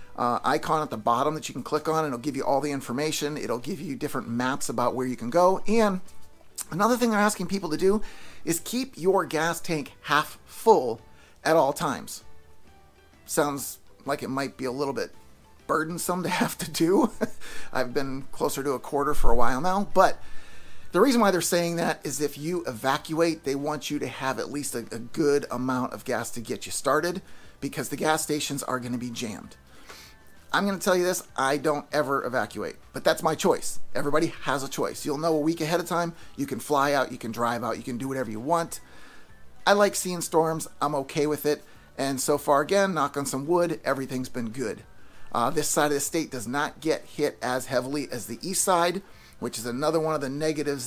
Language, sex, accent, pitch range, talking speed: English, male, American, 130-165 Hz, 220 wpm